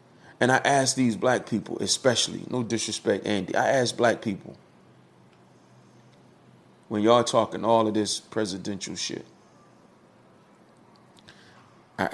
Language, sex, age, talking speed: English, male, 30-49, 115 wpm